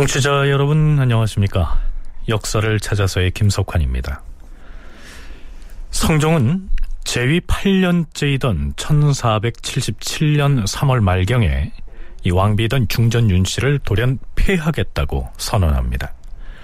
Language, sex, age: Korean, male, 40-59